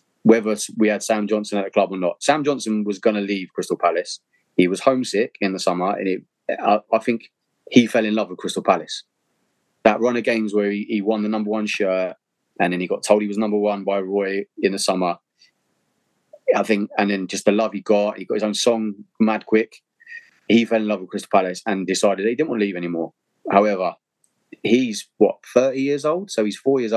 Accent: British